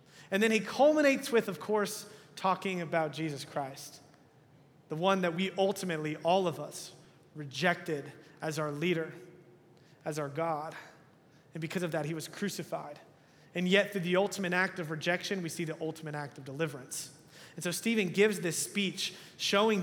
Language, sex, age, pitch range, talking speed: English, male, 30-49, 160-210 Hz, 165 wpm